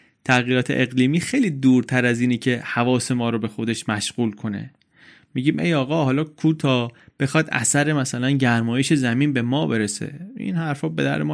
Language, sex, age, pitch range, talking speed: Persian, male, 30-49, 120-160 Hz, 165 wpm